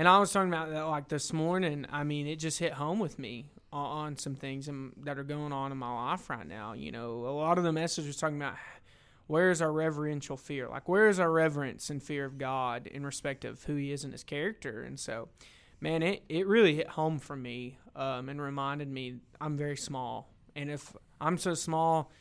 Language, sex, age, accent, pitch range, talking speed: English, male, 20-39, American, 135-160 Hz, 225 wpm